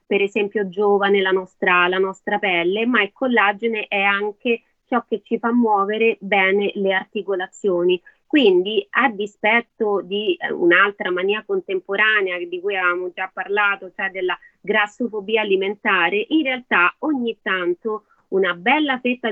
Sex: female